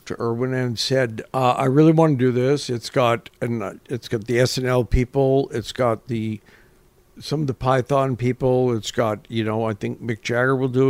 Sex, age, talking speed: male, 60-79, 205 wpm